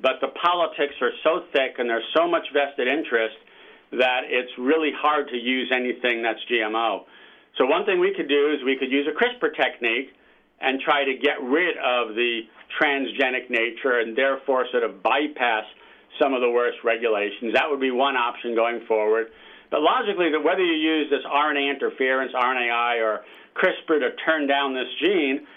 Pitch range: 125-150 Hz